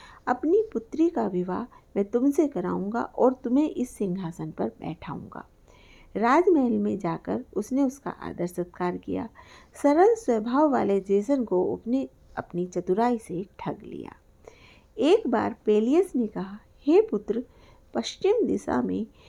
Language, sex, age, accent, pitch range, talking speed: Hindi, female, 50-69, native, 195-285 Hz, 130 wpm